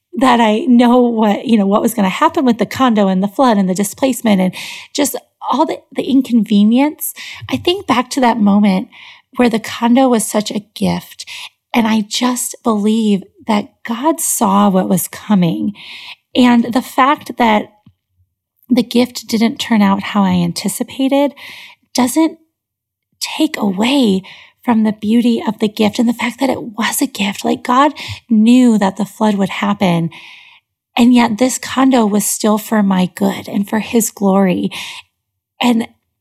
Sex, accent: female, American